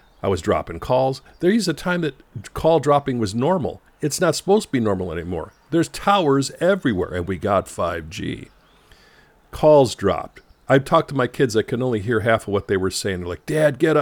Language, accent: English, American